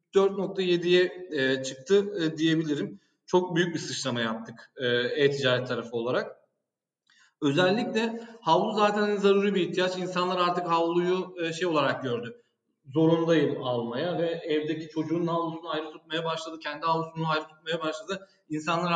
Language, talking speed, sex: Turkish, 120 wpm, male